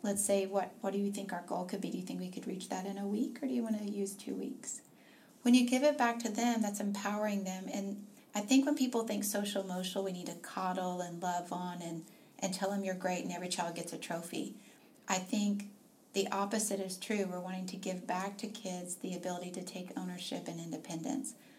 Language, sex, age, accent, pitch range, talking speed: English, female, 40-59, American, 185-230 Hz, 240 wpm